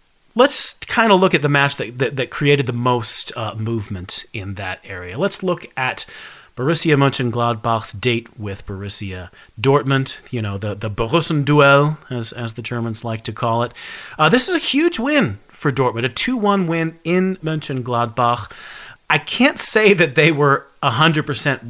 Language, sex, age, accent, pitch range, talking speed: English, male, 30-49, American, 115-150 Hz, 165 wpm